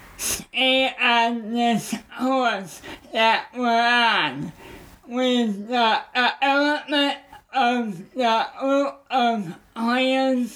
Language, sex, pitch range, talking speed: English, male, 220-260 Hz, 90 wpm